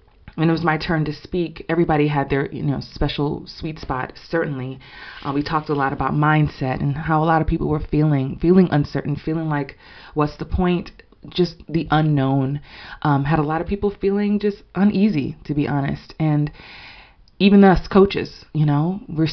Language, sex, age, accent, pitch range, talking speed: English, female, 20-39, American, 145-175 Hz, 185 wpm